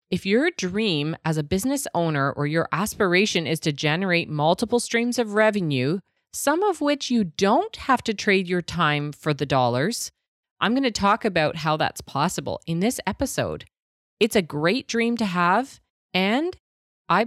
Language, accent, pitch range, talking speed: English, American, 150-220 Hz, 170 wpm